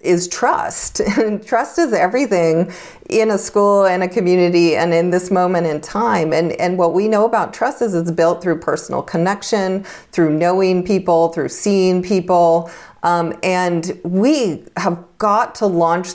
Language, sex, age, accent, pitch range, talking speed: English, female, 40-59, American, 170-205 Hz, 165 wpm